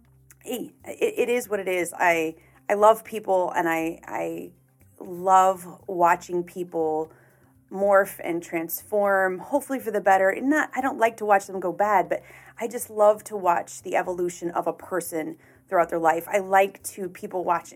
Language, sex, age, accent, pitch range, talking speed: English, female, 30-49, American, 170-205 Hz, 175 wpm